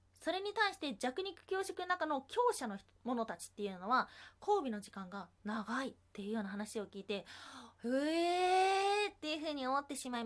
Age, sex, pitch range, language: 20-39, female, 205-335 Hz, Japanese